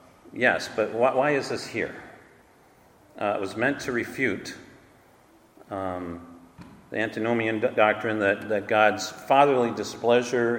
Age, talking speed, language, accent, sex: 50-69, 125 wpm, English, American, male